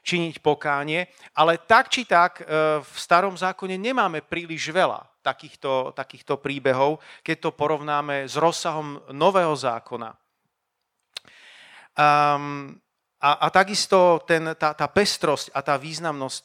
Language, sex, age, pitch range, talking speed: Slovak, male, 40-59, 145-170 Hz, 120 wpm